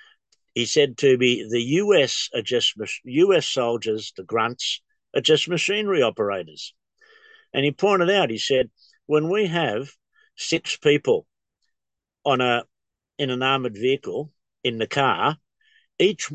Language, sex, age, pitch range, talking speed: English, male, 50-69, 130-180 Hz, 120 wpm